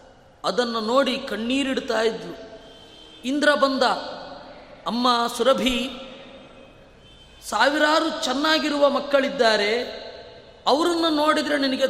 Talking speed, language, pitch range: 70 wpm, Kannada, 240-280 Hz